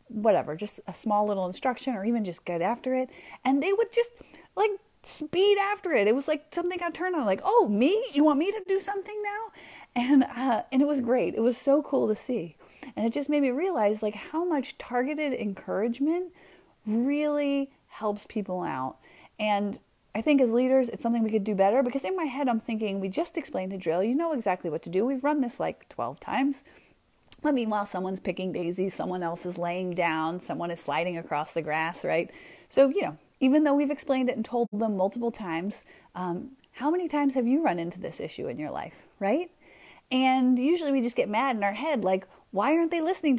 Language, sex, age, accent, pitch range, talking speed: English, female, 30-49, American, 195-290 Hz, 215 wpm